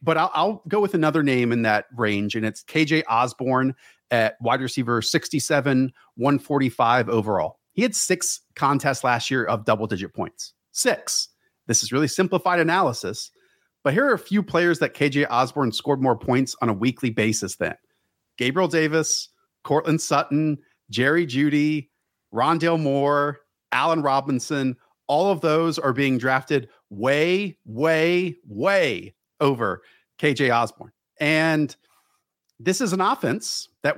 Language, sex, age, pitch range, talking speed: English, male, 40-59, 125-160 Hz, 140 wpm